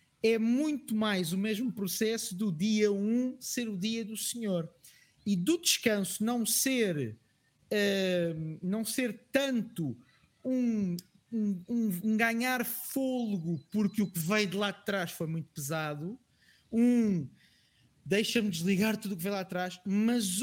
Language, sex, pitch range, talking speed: Portuguese, male, 190-250 Hz, 145 wpm